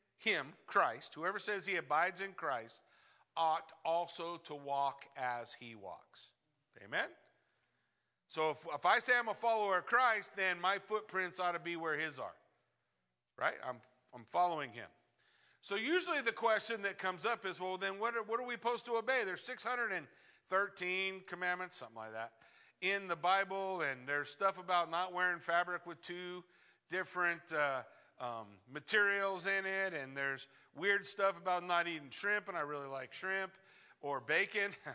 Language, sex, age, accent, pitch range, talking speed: English, male, 50-69, American, 150-200 Hz, 165 wpm